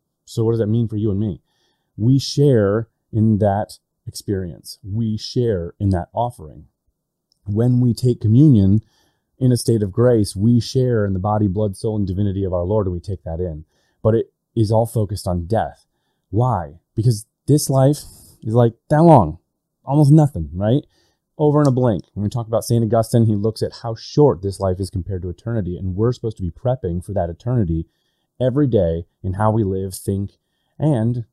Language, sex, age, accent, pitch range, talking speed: English, male, 30-49, American, 95-120 Hz, 195 wpm